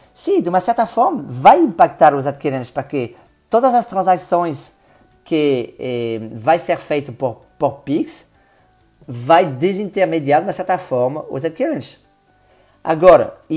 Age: 40-59